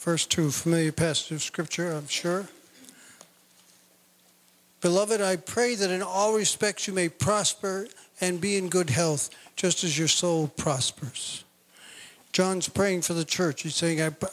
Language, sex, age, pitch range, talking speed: English, male, 50-69, 170-200 Hz, 150 wpm